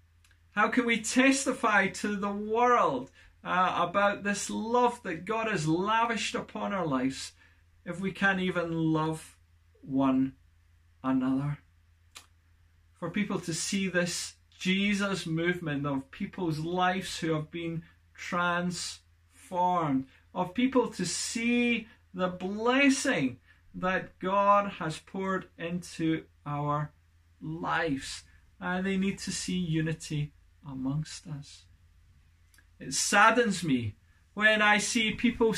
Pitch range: 125-200 Hz